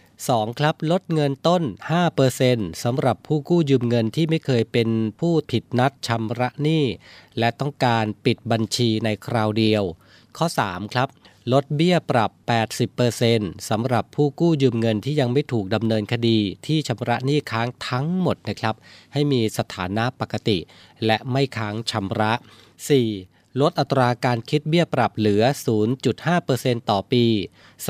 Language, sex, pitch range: Thai, male, 110-145 Hz